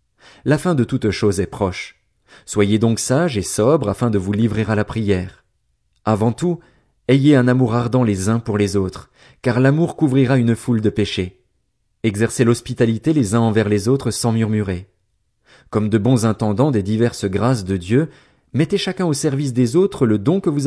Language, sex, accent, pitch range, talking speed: French, male, French, 110-145 Hz, 190 wpm